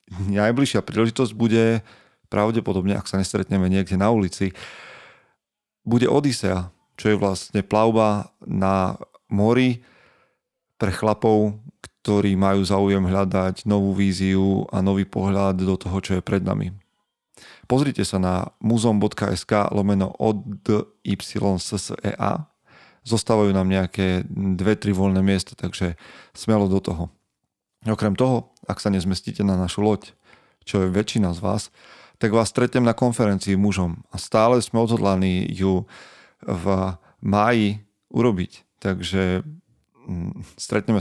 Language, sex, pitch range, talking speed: Slovak, male, 95-110 Hz, 120 wpm